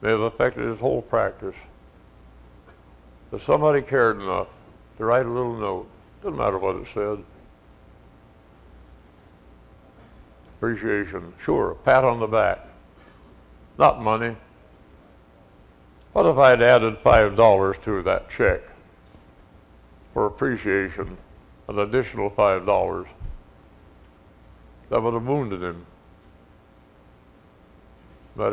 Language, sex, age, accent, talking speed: English, male, 60-79, American, 105 wpm